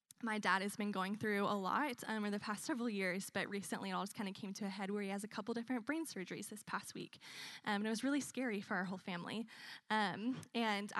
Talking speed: 260 wpm